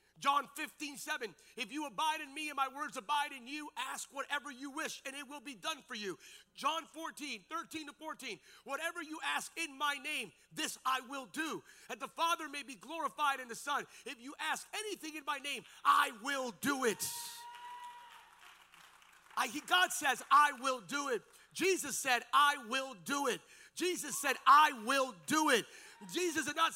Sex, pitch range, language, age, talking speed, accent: male, 245-315 Hz, English, 40-59, 180 wpm, American